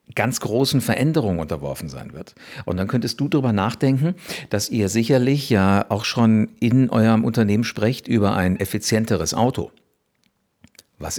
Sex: male